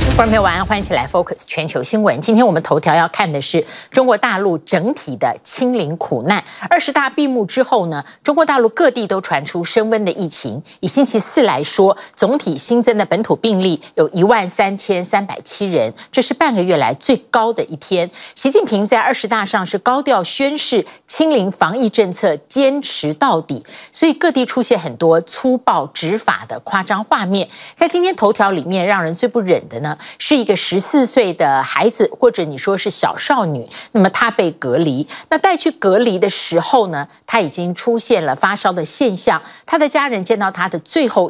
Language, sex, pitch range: Chinese, female, 175-255 Hz